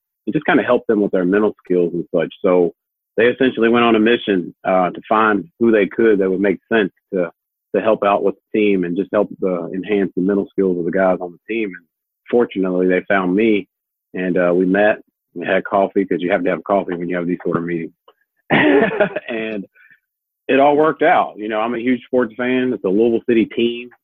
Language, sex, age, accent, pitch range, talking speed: English, male, 40-59, American, 90-110 Hz, 230 wpm